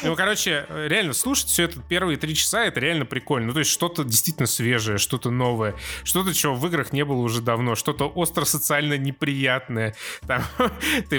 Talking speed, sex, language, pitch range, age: 170 wpm, male, Russian, 135-195 Hz, 20-39